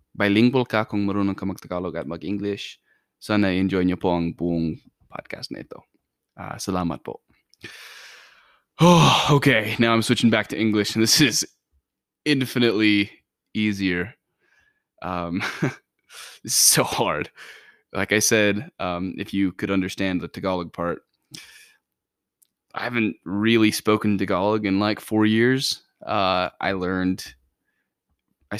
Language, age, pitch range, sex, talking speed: Filipino, 20-39, 90-105 Hz, male, 130 wpm